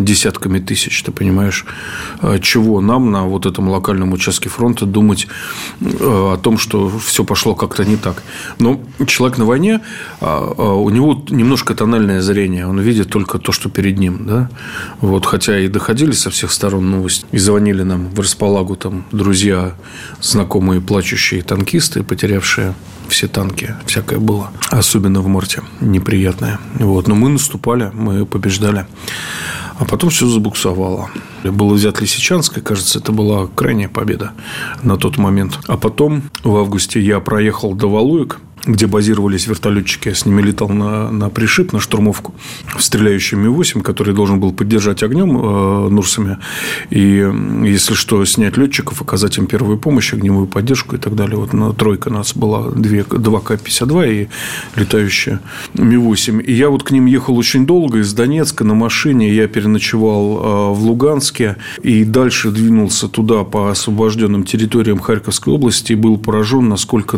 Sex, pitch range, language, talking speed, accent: male, 100-115 Hz, Russian, 150 wpm, native